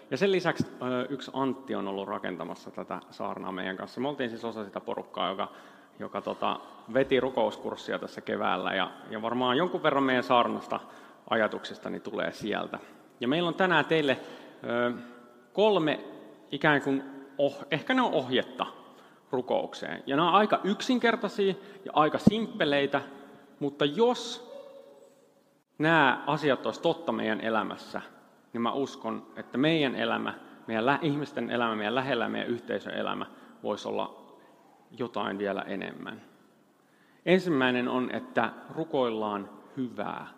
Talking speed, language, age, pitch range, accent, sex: 135 wpm, Finnish, 30-49, 115-145 Hz, native, male